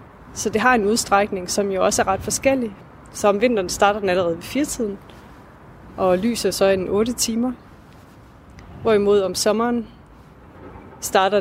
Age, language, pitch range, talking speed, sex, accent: 30-49, Danish, 185-230 Hz, 160 wpm, female, native